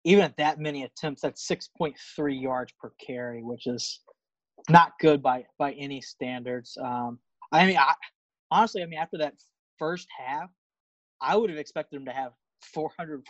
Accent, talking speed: American, 180 wpm